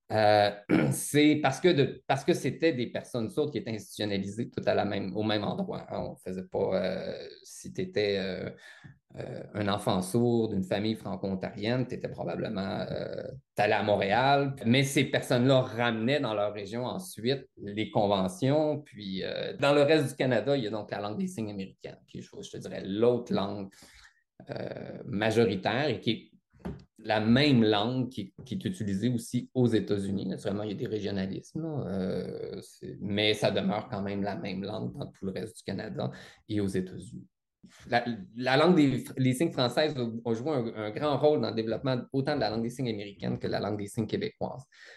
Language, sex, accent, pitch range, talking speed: French, male, Canadian, 100-135 Hz, 195 wpm